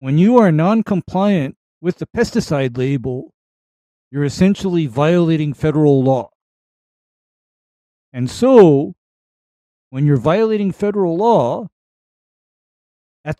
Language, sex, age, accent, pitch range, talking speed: English, male, 50-69, American, 140-180 Hz, 95 wpm